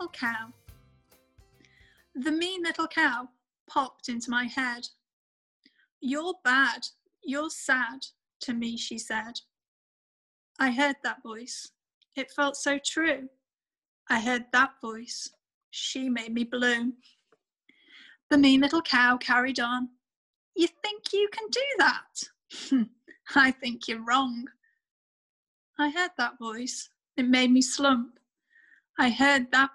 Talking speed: 120 wpm